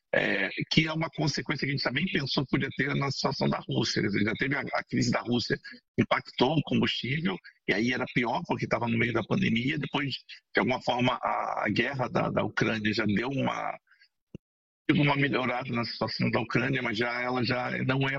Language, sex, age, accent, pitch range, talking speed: Portuguese, male, 60-79, Brazilian, 115-150 Hz, 205 wpm